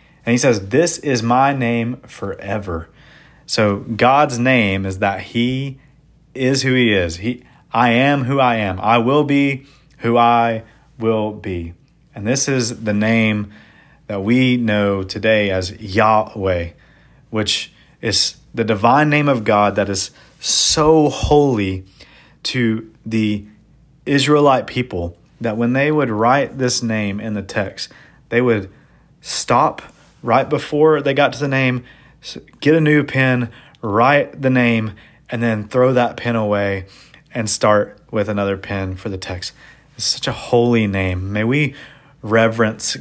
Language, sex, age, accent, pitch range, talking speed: English, male, 40-59, American, 100-130 Hz, 150 wpm